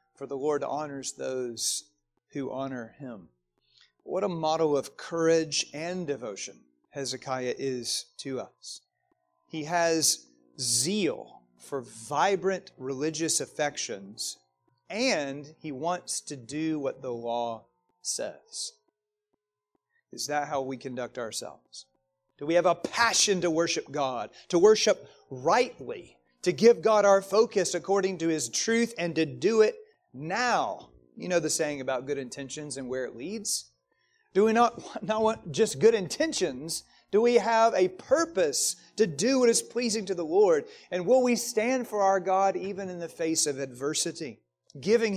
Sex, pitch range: male, 130-200 Hz